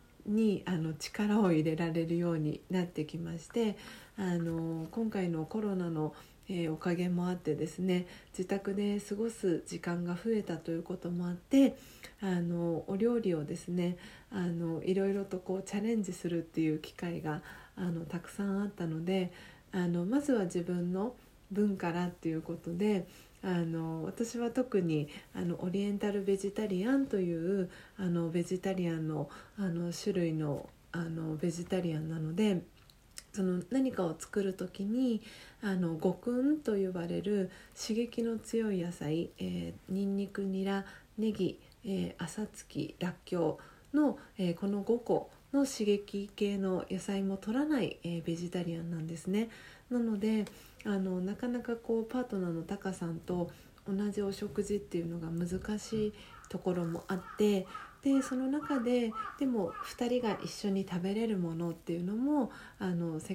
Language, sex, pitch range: Japanese, female, 170-210 Hz